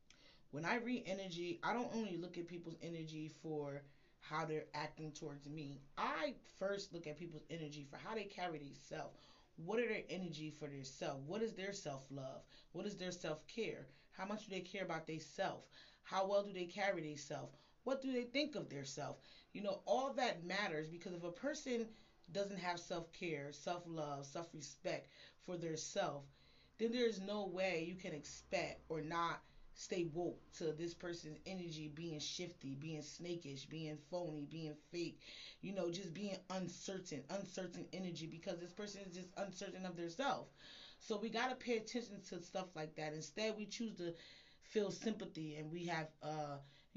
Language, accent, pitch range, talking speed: English, American, 155-195 Hz, 180 wpm